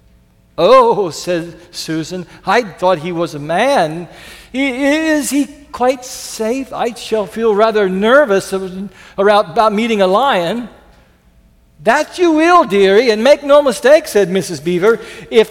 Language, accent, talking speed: English, American, 130 wpm